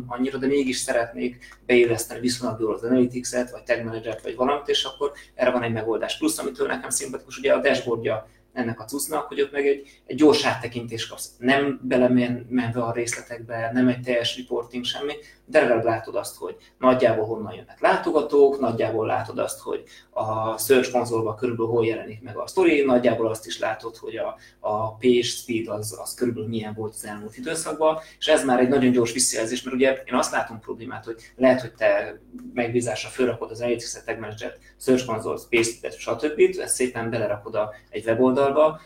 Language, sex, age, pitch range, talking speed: Hungarian, male, 20-39, 115-135 Hz, 180 wpm